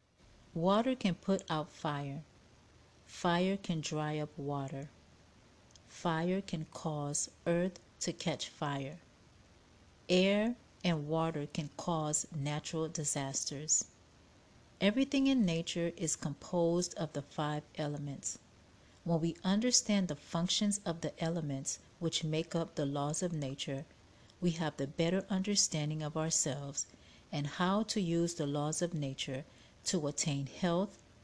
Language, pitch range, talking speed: English, 145-175 Hz, 125 wpm